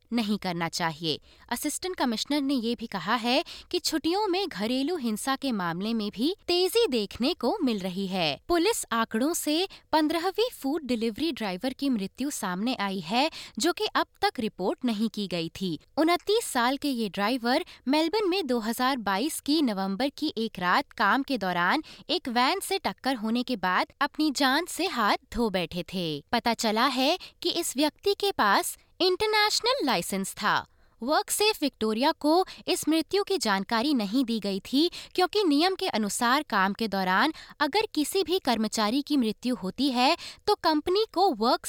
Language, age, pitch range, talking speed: Hindi, 20-39, 220-330 Hz, 170 wpm